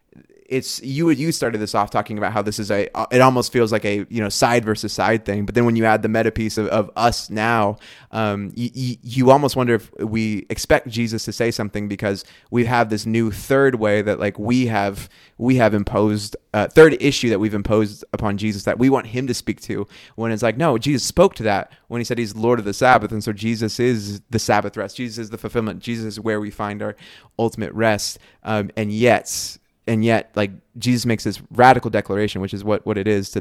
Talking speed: 230 wpm